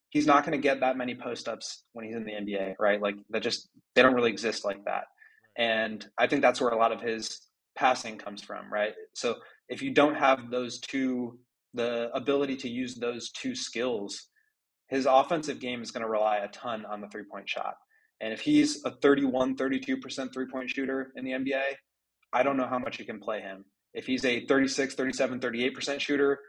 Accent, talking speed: American, 205 wpm